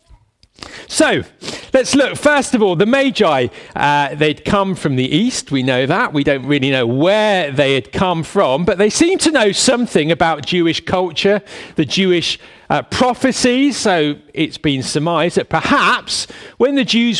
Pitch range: 150-215 Hz